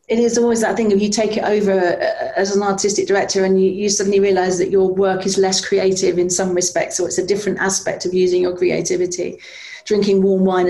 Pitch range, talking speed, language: 180-215 Hz, 225 wpm, English